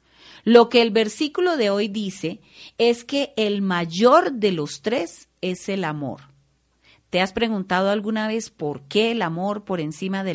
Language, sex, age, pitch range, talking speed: Spanish, female, 40-59, 165-230 Hz, 170 wpm